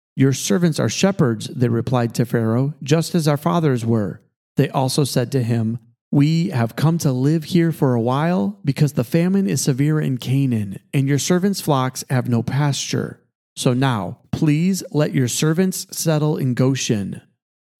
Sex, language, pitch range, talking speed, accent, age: male, English, 125-155 Hz, 170 wpm, American, 40-59